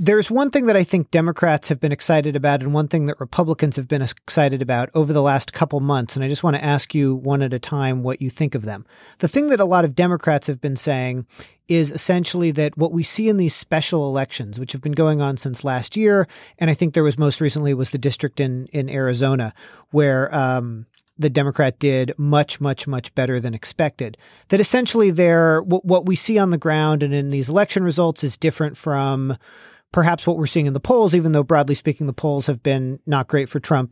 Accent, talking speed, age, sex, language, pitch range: American, 230 wpm, 40-59, male, English, 135-165 Hz